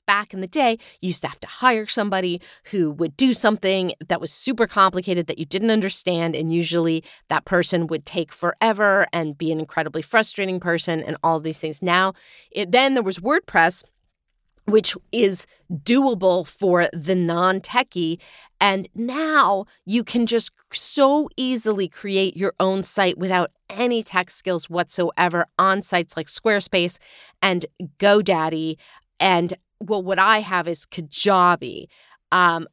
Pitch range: 170-215 Hz